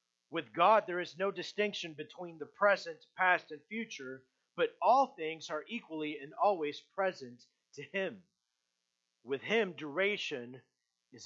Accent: American